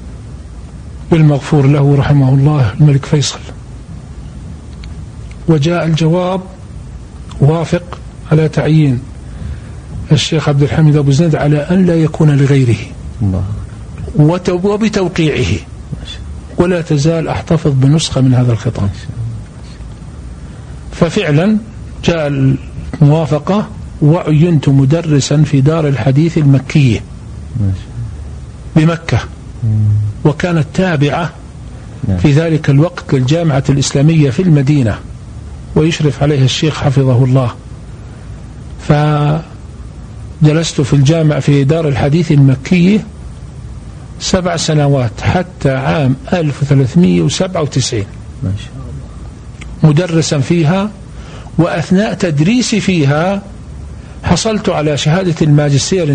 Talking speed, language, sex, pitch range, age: 80 wpm, Arabic, male, 120-165 Hz, 50-69